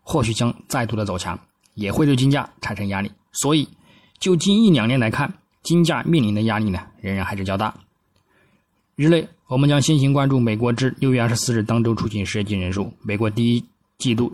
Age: 20-39